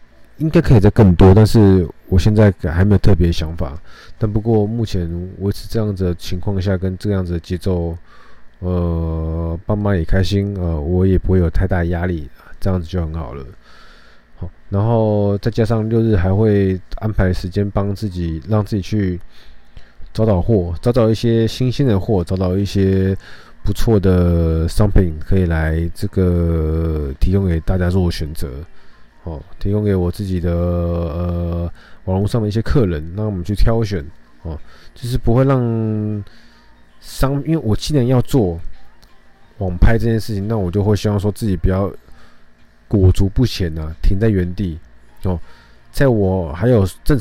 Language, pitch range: Chinese, 85-105 Hz